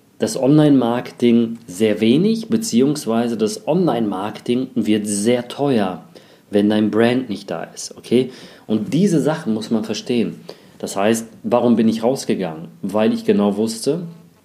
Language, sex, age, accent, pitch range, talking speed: German, male, 40-59, German, 105-125 Hz, 135 wpm